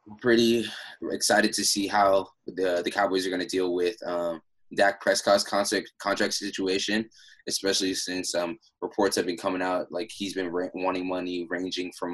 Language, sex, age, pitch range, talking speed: English, male, 20-39, 90-100 Hz, 170 wpm